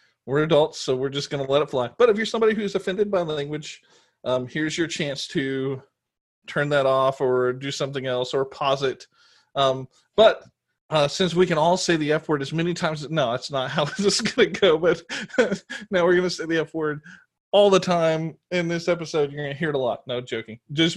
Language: English